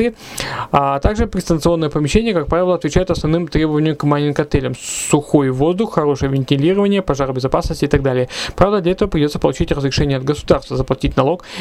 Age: 20-39